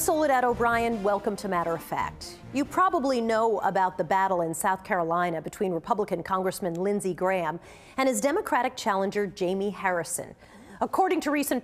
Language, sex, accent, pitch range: English, female, American, 190-255 Hz